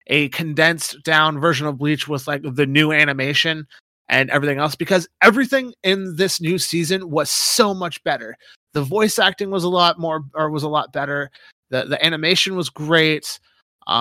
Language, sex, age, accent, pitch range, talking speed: English, male, 30-49, American, 150-190 Hz, 180 wpm